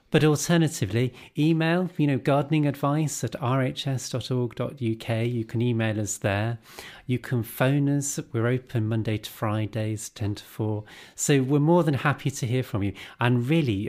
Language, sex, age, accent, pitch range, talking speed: English, male, 30-49, British, 105-130 Hz, 160 wpm